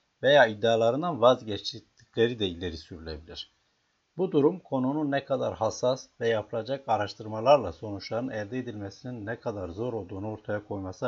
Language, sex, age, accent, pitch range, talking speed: Turkish, male, 60-79, native, 100-140 Hz, 130 wpm